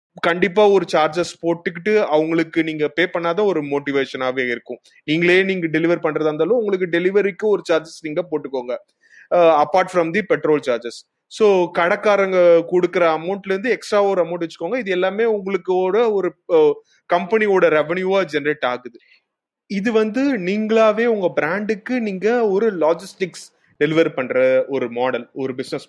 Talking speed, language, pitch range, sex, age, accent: 135 wpm, Tamil, 150-200 Hz, male, 30-49, native